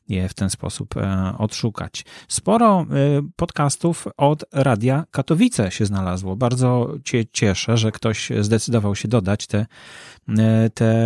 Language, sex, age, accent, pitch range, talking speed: Polish, male, 30-49, native, 105-125 Hz, 120 wpm